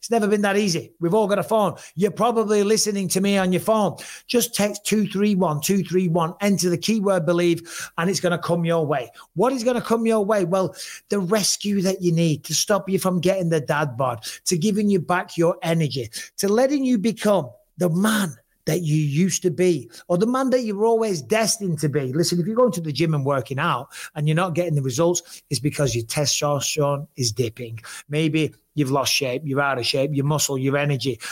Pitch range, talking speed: 150-195 Hz, 215 wpm